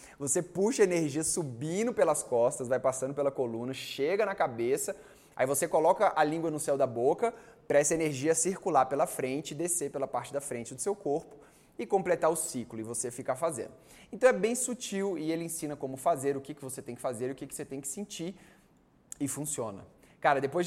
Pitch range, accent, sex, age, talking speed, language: 135-180 Hz, Brazilian, male, 20-39, 205 wpm, Portuguese